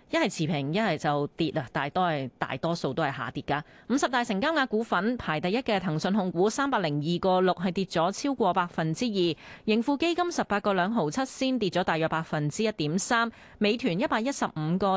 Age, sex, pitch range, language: 30-49, female, 165-235 Hz, Chinese